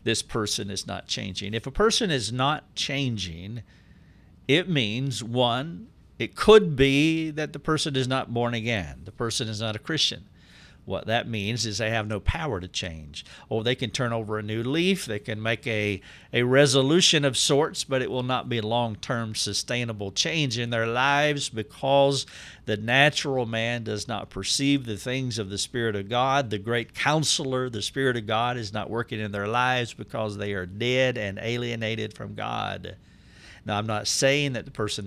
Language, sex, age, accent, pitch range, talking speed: English, male, 50-69, American, 105-140 Hz, 185 wpm